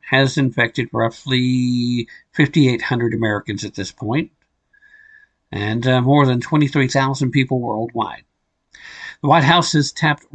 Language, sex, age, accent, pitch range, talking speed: English, male, 50-69, American, 115-160 Hz, 115 wpm